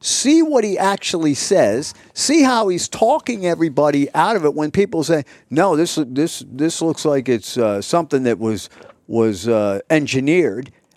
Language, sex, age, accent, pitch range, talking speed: English, male, 50-69, American, 145-220 Hz, 165 wpm